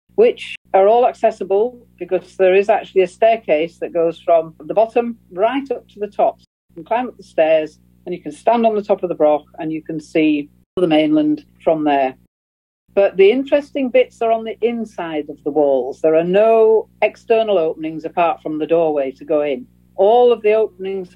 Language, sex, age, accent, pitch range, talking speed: English, female, 50-69, British, 165-220 Hz, 200 wpm